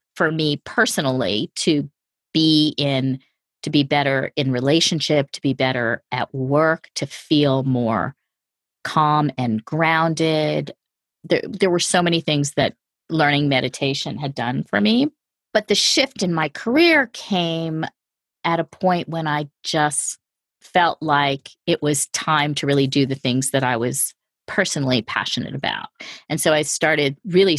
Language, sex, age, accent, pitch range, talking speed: English, female, 40-59, American, 140-170 Hz, 150 wpm